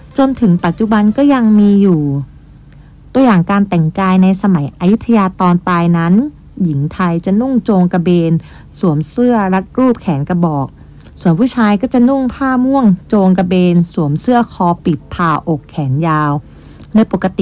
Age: 30-49